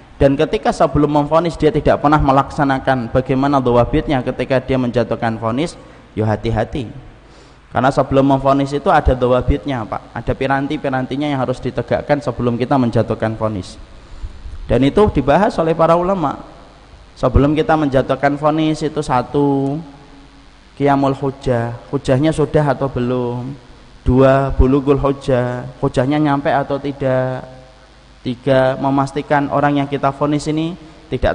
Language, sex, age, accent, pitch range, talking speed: Indonesian, male, 20-39, native, 125-140 Hz, 125 wpm